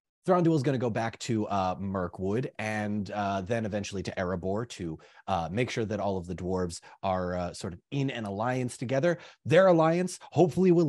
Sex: male